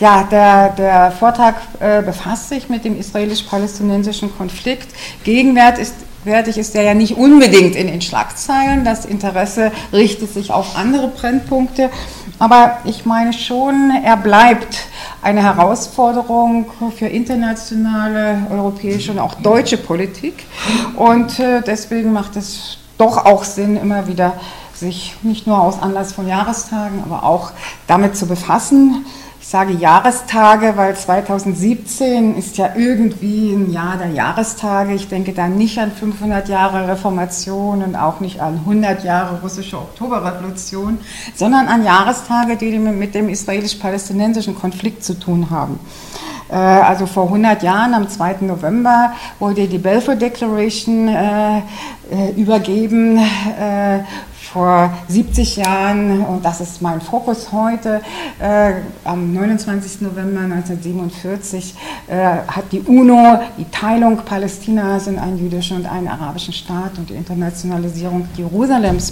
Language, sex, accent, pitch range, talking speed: German, female, German, 190-225 Hz, 125 wpm